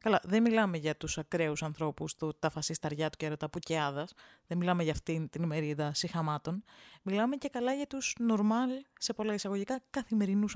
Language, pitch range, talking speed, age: Greek, 160-230 Hz, 195 wpm, 20-39